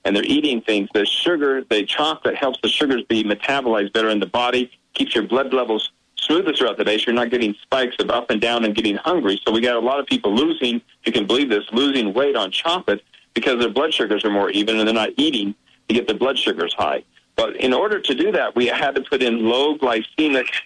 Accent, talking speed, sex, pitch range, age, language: American, 245 wpm, male, 110-140 Hz, 50-69, English